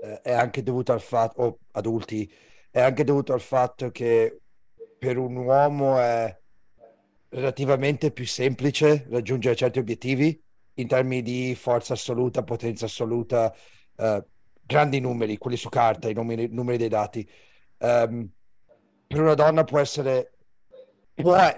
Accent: native